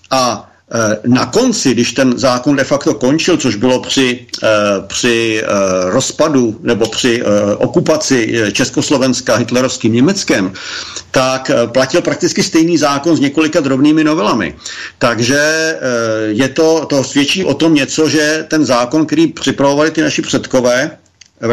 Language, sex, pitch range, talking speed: Slovak, male, 120-150 Hz, 130 wpm